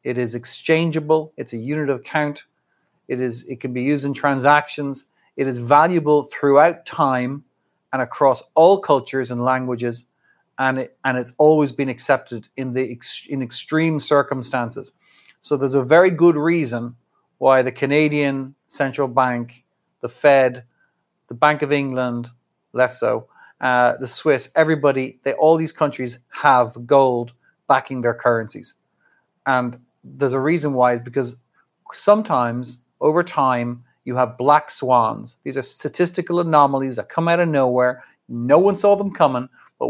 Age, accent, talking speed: 40-59, Irish, 150 wpm